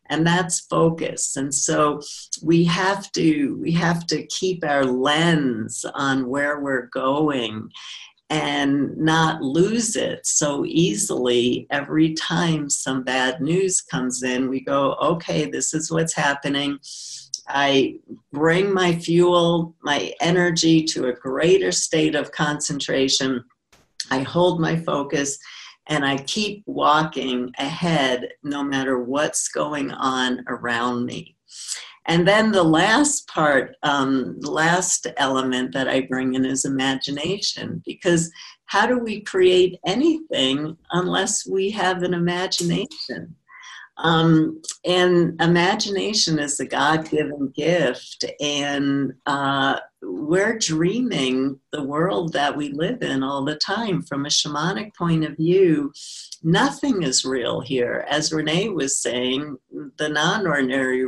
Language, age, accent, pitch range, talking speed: English, 50-69, American, 135-175 Hz, 125 wpm